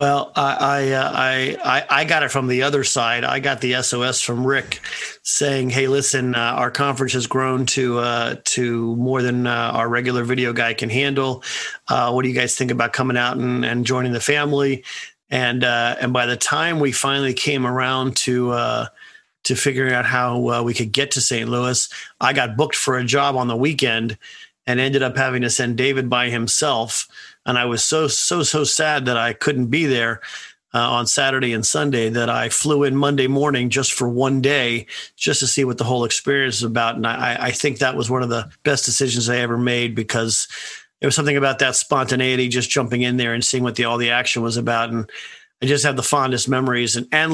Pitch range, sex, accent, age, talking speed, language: 120-135 Hz, male, American, 40-59, 220 wpm, English